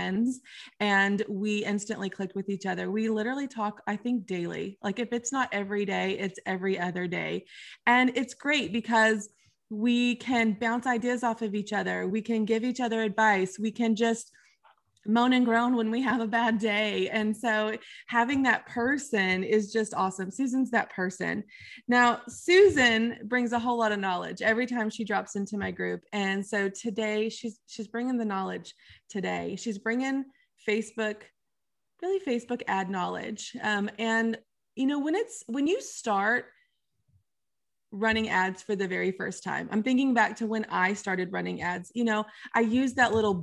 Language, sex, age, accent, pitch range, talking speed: English, female, 20-39, American, 195-240 Hz, 175 wpm